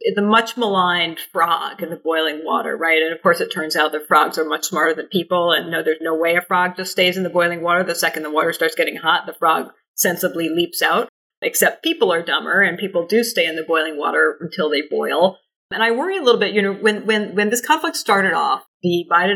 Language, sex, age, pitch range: English, female, 40-59, 165-210 Hz